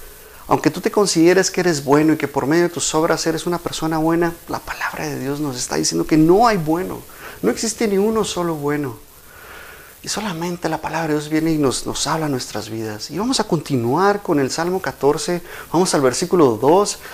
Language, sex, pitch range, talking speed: Spanish, male, 125-170 Hz, 215 wpm